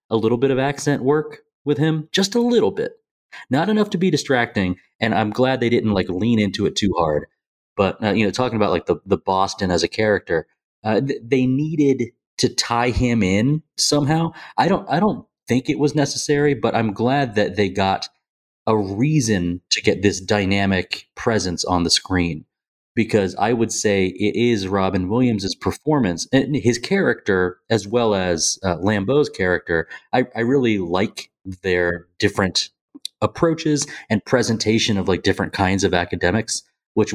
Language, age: English, 30-49